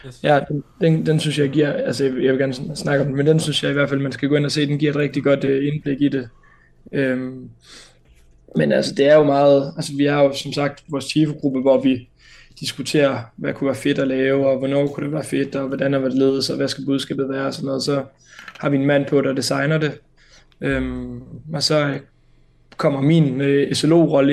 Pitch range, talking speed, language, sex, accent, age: 135-145 Hz, 235 wpm, Danish, male, native, 20-39